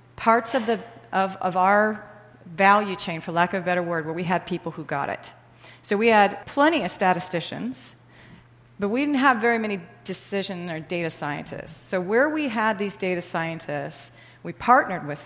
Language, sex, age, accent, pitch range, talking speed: English, female, 40-59, American, 160-200 Hz, 185 wpm